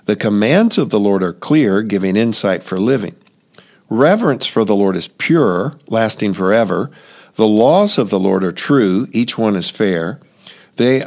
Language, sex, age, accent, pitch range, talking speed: English, male, 50-69, American, 95-120 Hz, 170 wpm